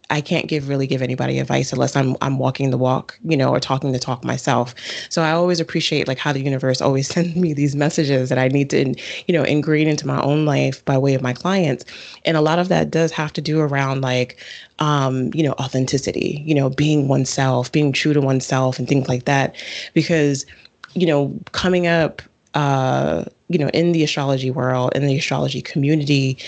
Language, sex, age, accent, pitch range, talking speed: English, female, 20-39, American, 130-155 Hz, 210 wpm